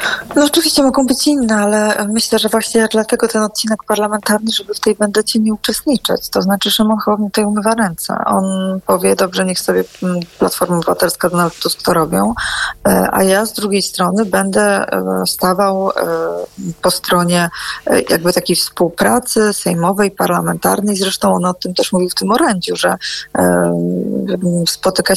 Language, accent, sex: Polish, native, female